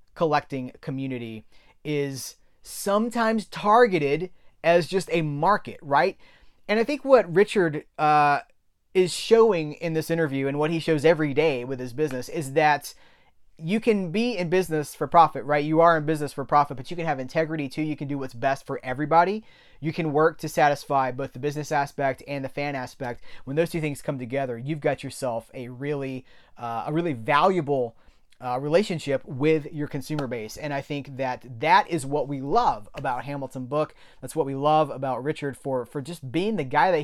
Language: English